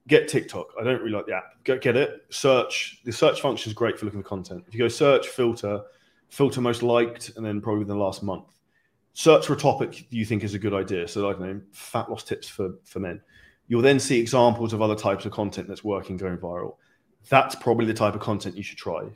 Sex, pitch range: male, 100-120 Hz